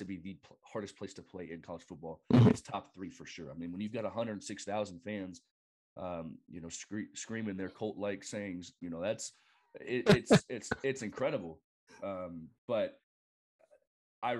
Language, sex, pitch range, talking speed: English, male, 95-135 Hz, 175 wpm